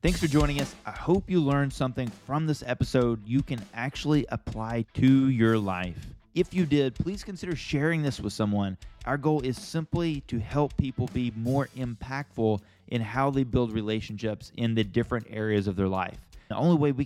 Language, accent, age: English, American, 20-39